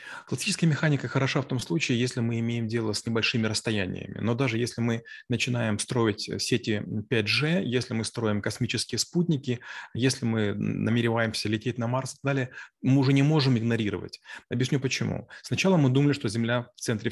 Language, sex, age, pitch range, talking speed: Russian, male, 30-49, 110-130 Hz, 170 wpm